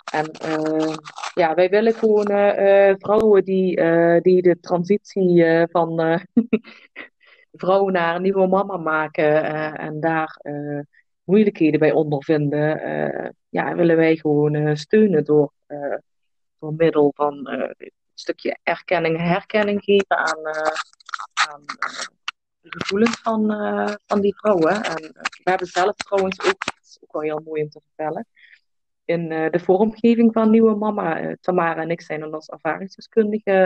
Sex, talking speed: female, 160 wpm